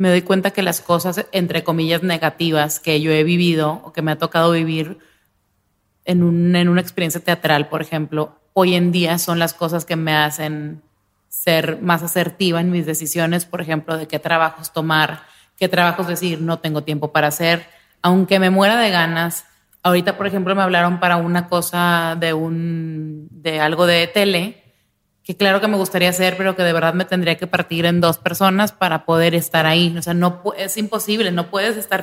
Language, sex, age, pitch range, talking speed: Spanish, female, 30-49, 165-190 Hz, 190 wpm